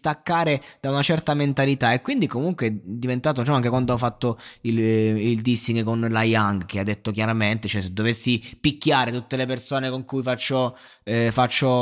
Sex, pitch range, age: male, 115-145 Hz, 20-39